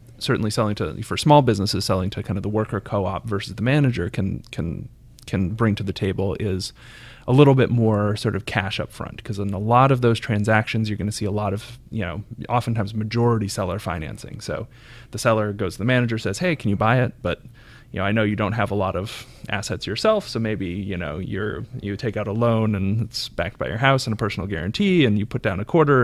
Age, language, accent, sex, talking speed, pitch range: 30-49, English, American, male, 240 wpm, 100-115 Hz